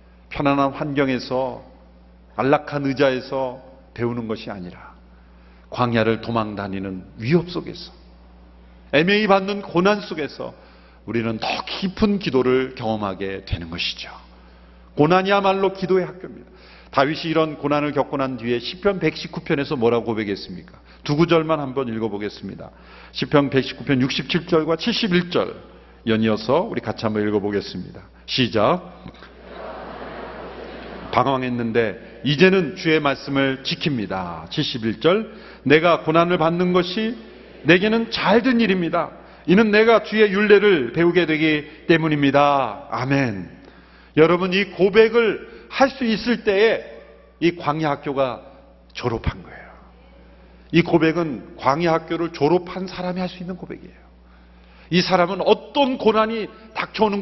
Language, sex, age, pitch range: Korean, male, 40-59, 110-180 Hz